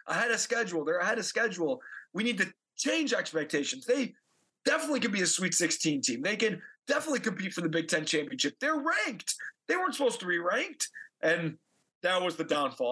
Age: 30-49